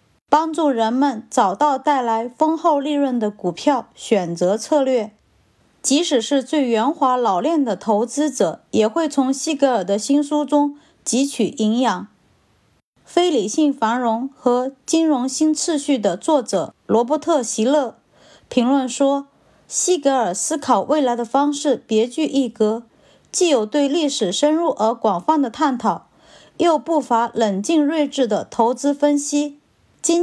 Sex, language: female, Chinese